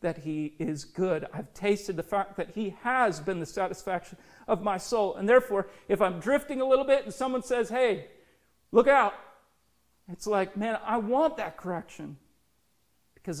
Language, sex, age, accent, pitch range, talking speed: English, male, 40-59, American, 160-210 Hz, 175 wpm